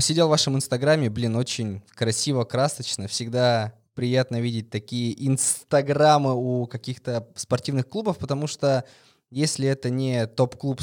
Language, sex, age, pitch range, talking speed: Russian, male, 20-39, 120-140 Hz, 125 wpm